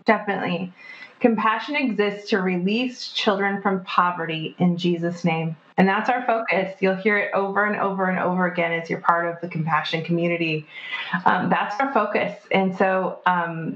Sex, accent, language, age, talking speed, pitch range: female, American, English, 30-49, 165 wpm, 180-220 Hz